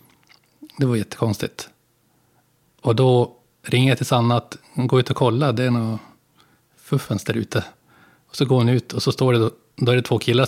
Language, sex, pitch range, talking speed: Swedish, male, 110-130 Hz, 195 wpm